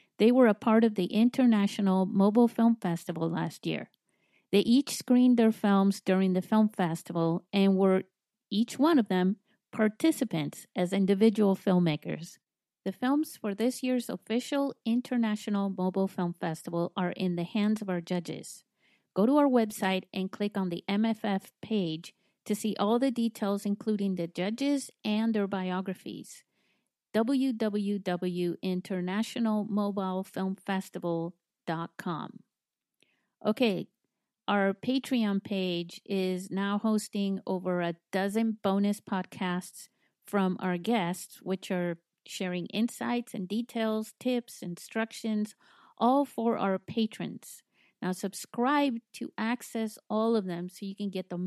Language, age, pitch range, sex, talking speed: English, 50-69, 185-225 Hz, female, 125 wpm